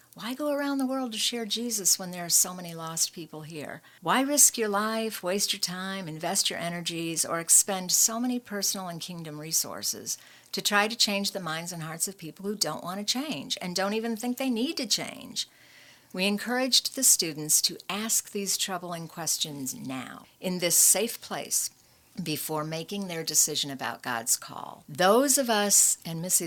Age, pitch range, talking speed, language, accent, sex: 60-79, 160-215 Hz, 185 wpm, English, American, female